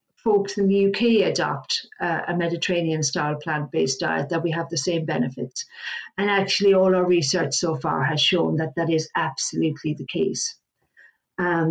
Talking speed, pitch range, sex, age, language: 165 wpm, 170-215 Hz, female, 50-69, English